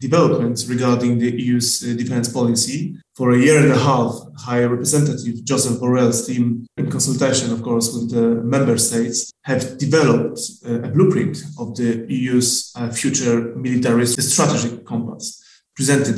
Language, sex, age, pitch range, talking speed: Polish, male, 30-49, 120-150 Hz, 150 wpm